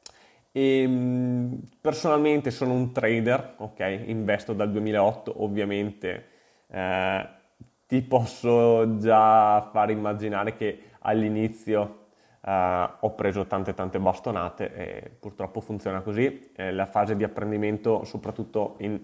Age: 20-39